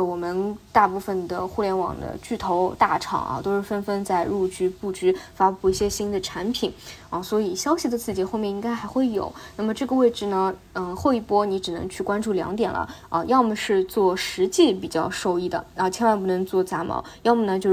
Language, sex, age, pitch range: Chinese, female, 20-39, 185-225 Hz